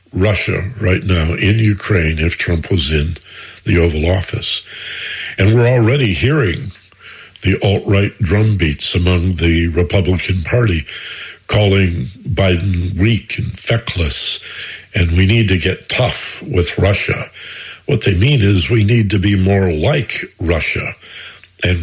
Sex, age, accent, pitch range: male, 60-79, American, 90-120 Hz